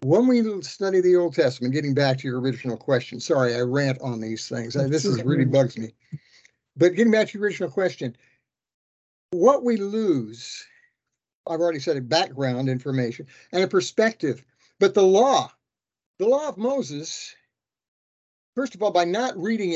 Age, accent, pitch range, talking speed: 60-79, American, 140-200 Hz, 170 wpm